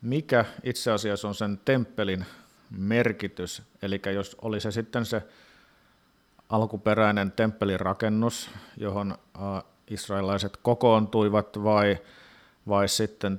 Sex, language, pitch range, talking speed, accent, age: male, Finnish, 100-115 Hz, 95 wpm, native, 50-69